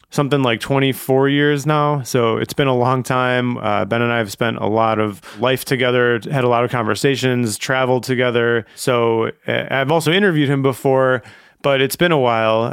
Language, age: English, 30-49